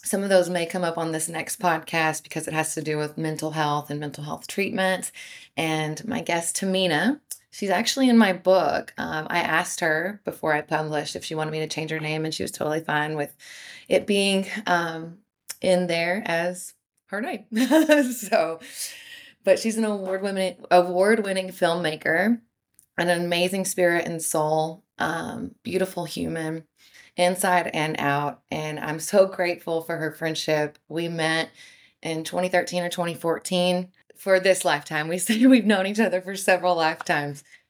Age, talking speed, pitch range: 20-39, 165 wpm, 160-190 Hz